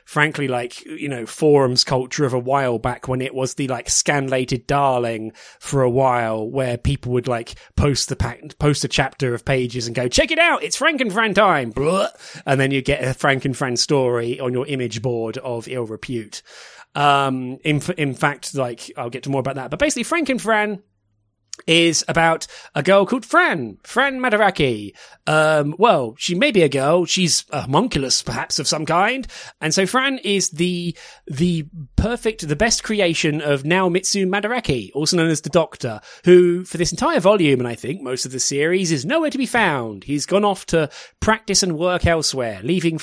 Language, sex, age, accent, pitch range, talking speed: English, male, 30-49, British, 130-180 Hz, 195 wpm